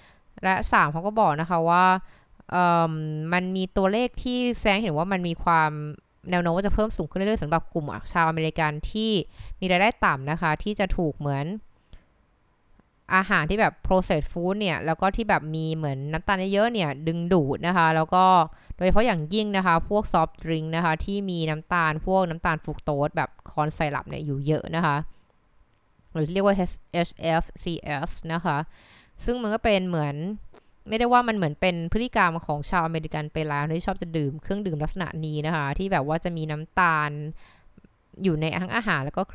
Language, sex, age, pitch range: Thai, female, 20-39, 155-195 Hz